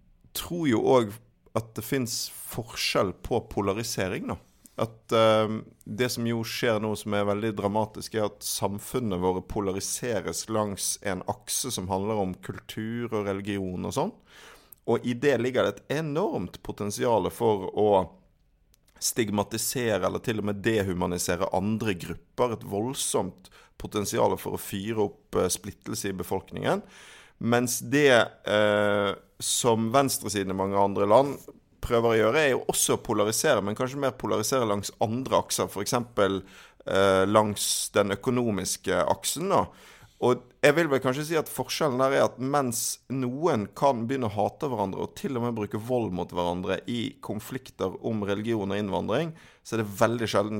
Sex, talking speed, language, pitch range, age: male, 160 wpm, English, 100-120 Hz, 50-69